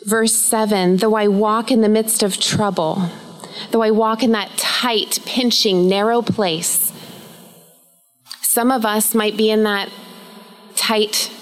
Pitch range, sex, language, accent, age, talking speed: 180-220 Hz, female, English, American, 30-49, 140 wpm